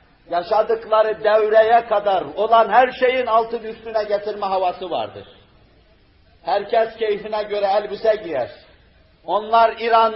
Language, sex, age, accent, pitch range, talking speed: Turkish, male, 50-69, native, 165-215 Hz, 105 wpm